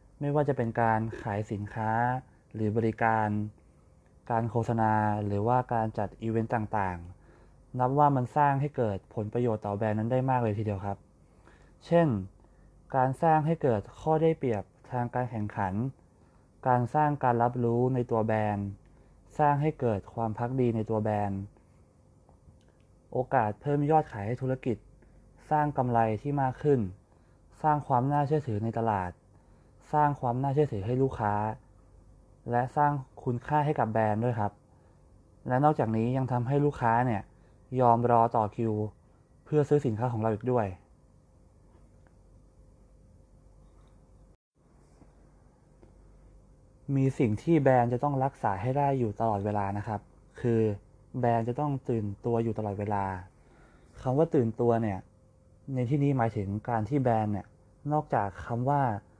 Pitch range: 105-130 Hz